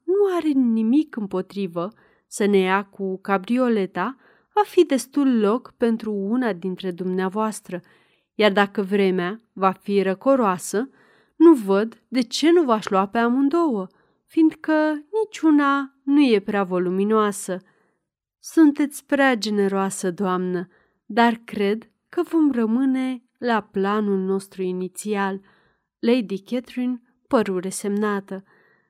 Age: 30-49